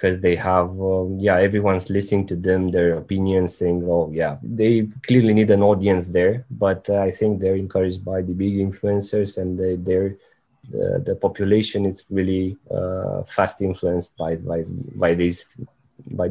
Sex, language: male, English